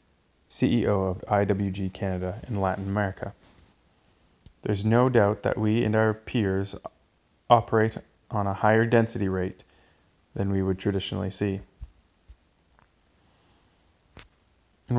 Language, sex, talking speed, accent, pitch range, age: English, male, 110 wpm, American, 95-110 Hz, 20-39